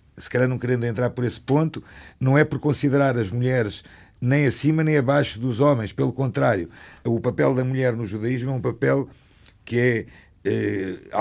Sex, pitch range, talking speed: male, 95-145 Hz, 180 wpm